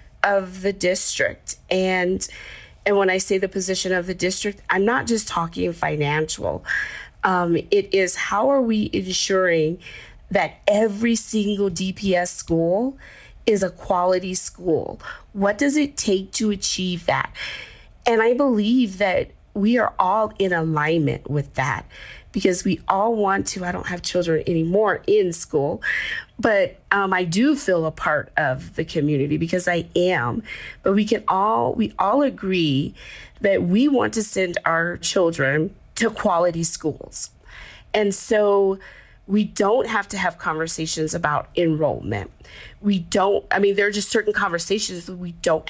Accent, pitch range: American, 170-210 Hz